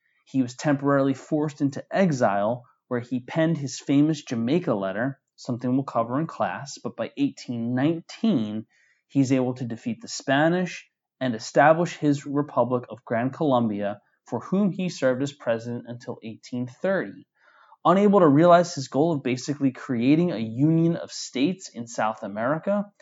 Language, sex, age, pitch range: English, male, 20-39, 115-155 Hz